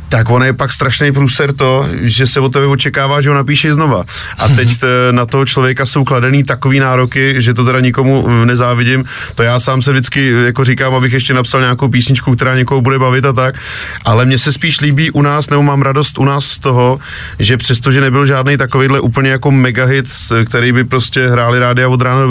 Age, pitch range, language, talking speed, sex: 30-49, 120-135 Hz, Czech, 215 wpm, male